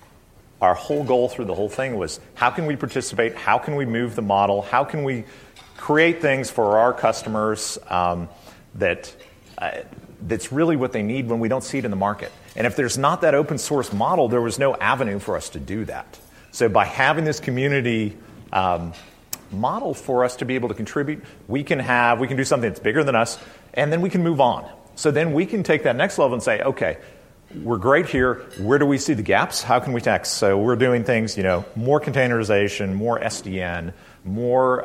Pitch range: 100-140 Hz